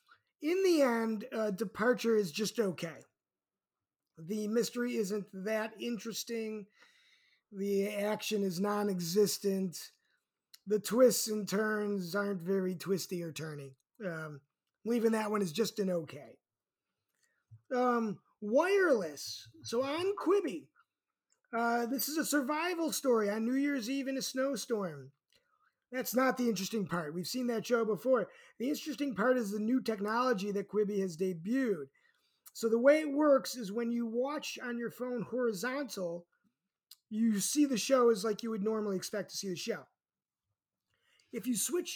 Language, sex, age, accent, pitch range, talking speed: English, male, 30-49, American, 200-260 Hz, 145 wpm